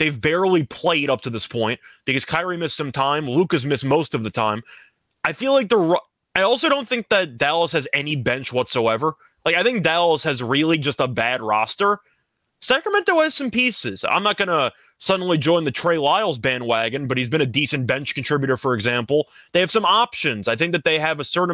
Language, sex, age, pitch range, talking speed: English, male, 20-39, 135-185 Hz, 210 wpm